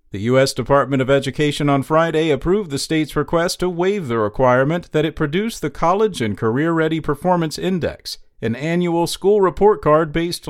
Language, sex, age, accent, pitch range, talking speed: English, male, 40-59, American, 130-170 Hz, 175 wpm